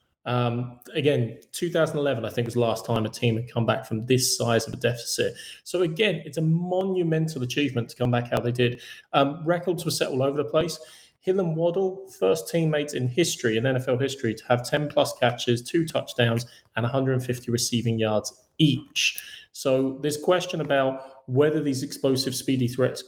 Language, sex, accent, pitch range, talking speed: English, male, British, 120-145 Hz, 180 wpm